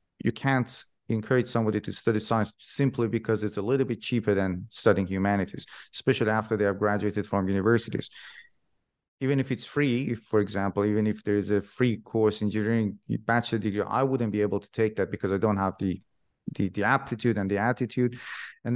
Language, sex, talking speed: English, male, 190 wpm